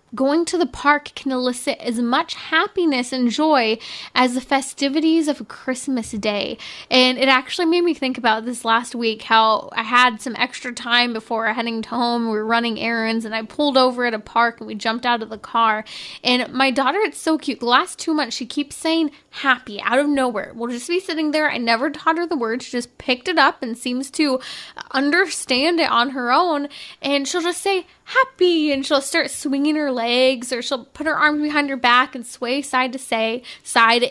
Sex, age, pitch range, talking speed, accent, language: female, 10-29, 240-300 Hz, 215 wpm, American, English